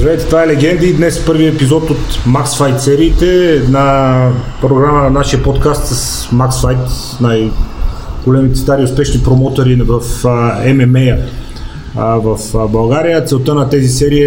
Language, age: Bulgarian, 30-49